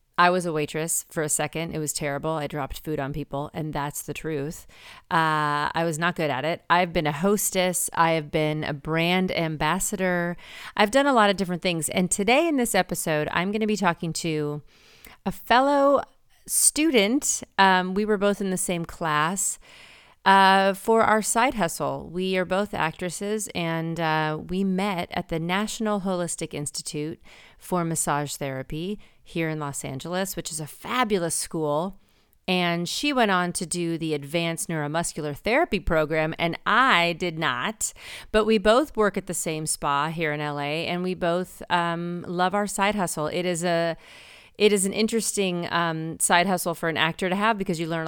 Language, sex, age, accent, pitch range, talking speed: English, female, 30-49, American, 155-195 Hz, 185 wpm